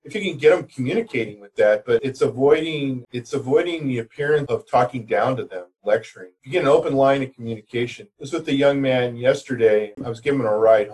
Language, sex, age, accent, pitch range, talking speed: English, male, 40-59, American, 115-150 Hz, 225 wpm